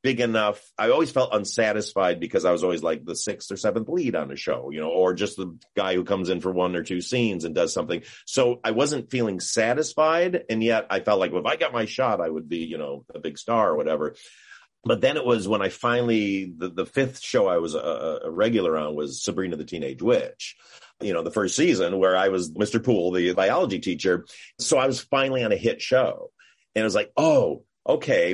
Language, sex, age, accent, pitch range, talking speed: English, male, 40-59, American, 95-130 Hz, 235 wpm